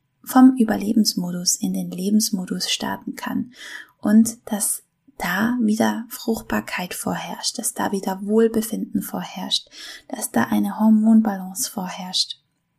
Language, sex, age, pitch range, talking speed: German, female, 20-39, 185-235 Hz, 110 wpm